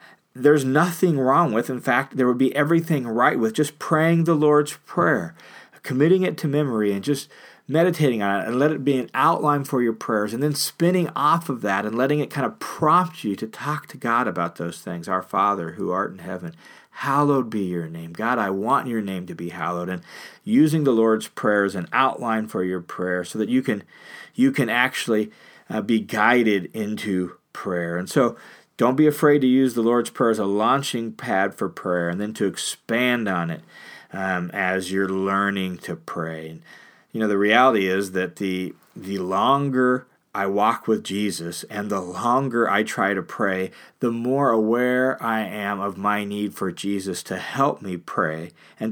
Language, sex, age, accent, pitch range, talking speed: English, male, 40-59, American, 95-135 Hz, 195 wpm